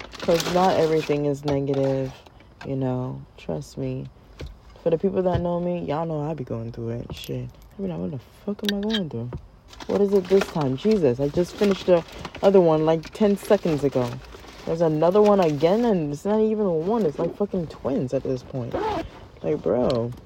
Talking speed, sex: 195 wpm, female